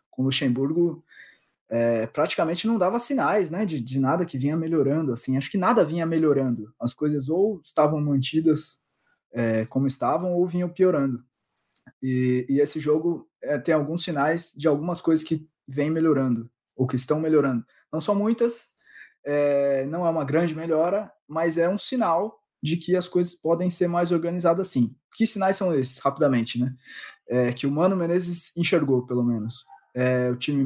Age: 20-39